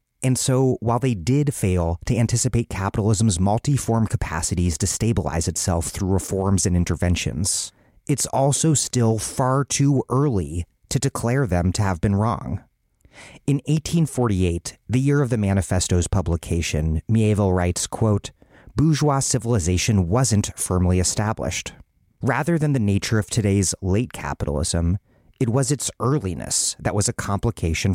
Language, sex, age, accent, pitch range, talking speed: English, male, 30-49, American, 90-125 Hz, 135 wpm